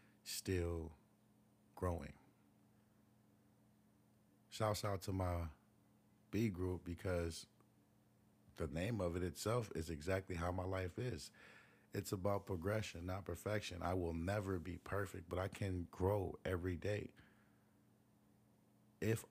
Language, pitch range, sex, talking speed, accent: English, 90-105 Hz, male, 115 wpm, American